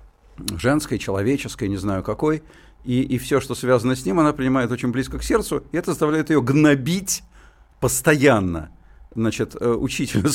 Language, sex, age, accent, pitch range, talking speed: Russian, male, 50-69, native, 110-155 Hz, 150 wpm